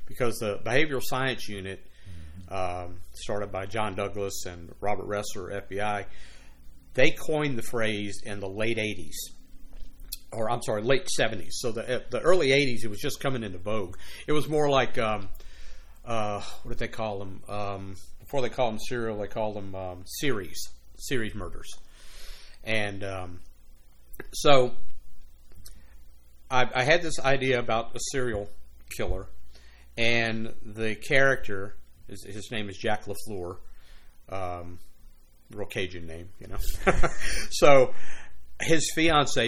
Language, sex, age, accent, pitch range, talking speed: English, male, 50-69, American, 85-125 Hz, 140 wpm